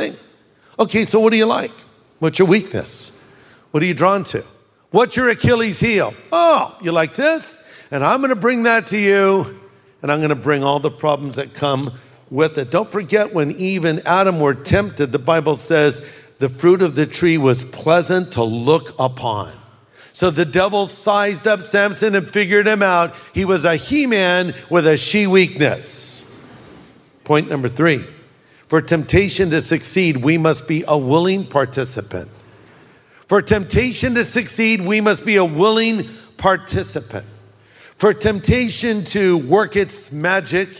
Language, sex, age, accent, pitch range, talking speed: English, male, 50-69, American, 150-205 Hz, 155 wpm